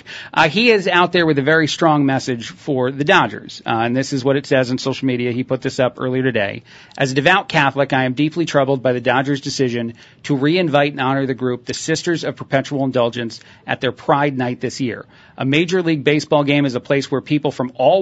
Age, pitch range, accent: 40-59, 130-155 Hz, American